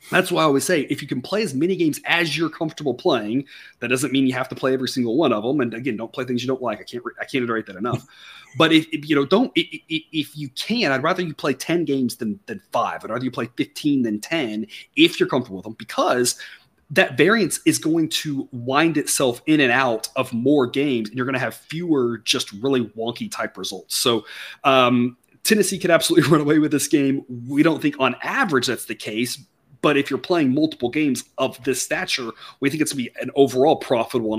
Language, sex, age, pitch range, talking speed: English, male, 30-49, 125-170 Hz, 235 wpm